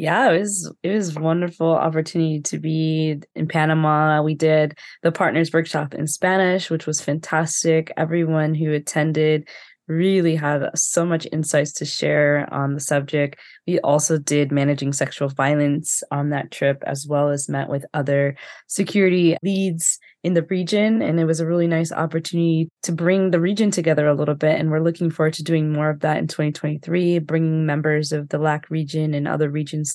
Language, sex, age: English, female, 20-39